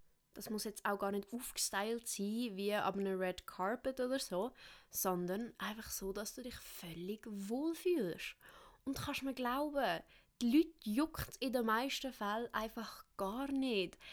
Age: 20-39